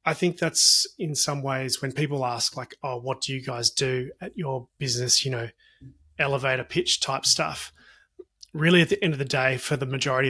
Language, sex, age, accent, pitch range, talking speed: English, male, 30-49, Australian, 130-160 Hz, 205 wpm